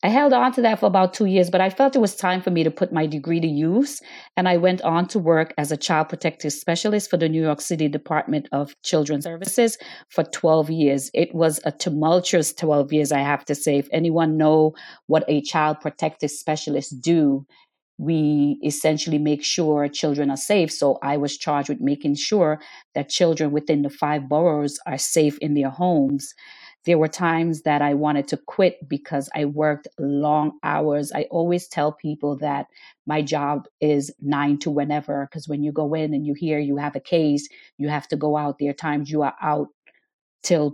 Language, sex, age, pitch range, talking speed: English, female, 40-59, 145-170 Hz, 205 wpm